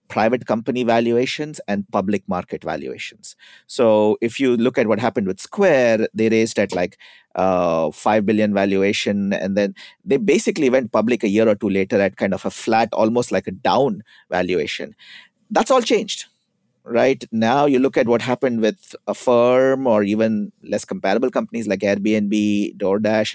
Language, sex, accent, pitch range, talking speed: English, male, Indian, 105-150 Hz, 170 wpm